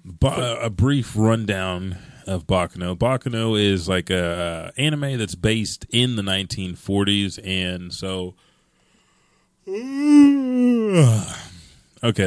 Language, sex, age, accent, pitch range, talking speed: English, male, 30-49, American, 90-115 Hz, 95 wpm